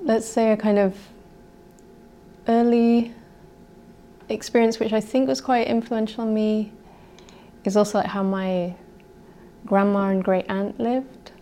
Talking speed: 130 wpm